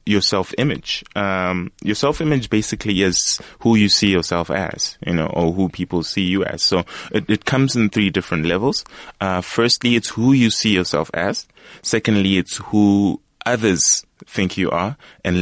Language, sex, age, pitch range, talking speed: English, male, 20-39, 90-105 Hz, 170 wpm